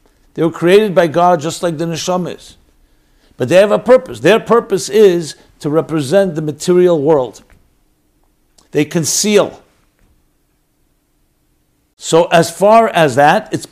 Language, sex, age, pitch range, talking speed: English, male, 60-79, 155-195 Hz, 135 wpm